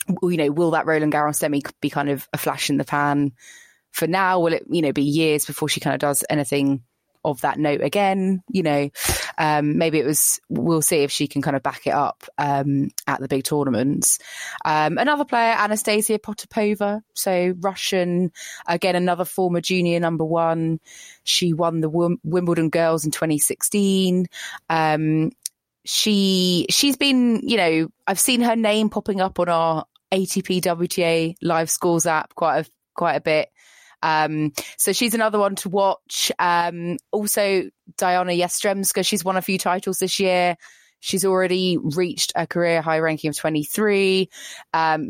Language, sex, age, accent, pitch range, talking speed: English, female, 20-39, British, 150-190 Hz, 170 wpm